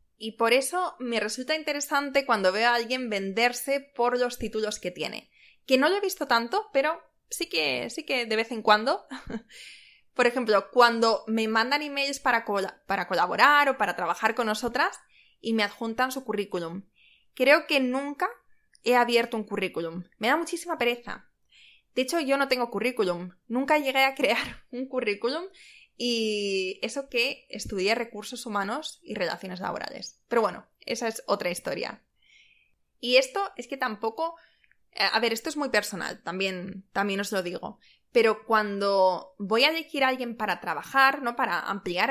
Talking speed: 165 wpm